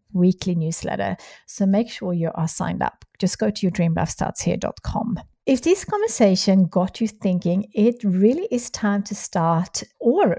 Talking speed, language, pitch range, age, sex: 175 wpm, English, 170-210 Hz, 50-69, female